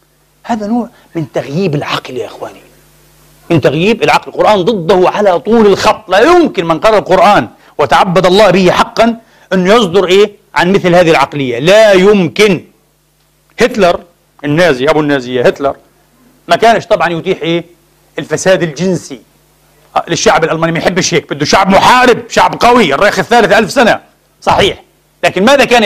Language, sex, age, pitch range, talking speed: Arabic, male, 40-59, 160-215 Hz, 145 wpm